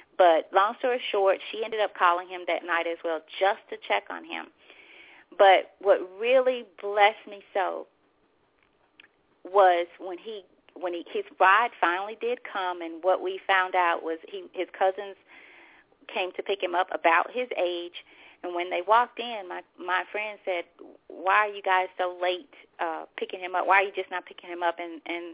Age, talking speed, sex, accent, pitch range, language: 30-49, 190 wpm, female, American, 175-230 Hz, English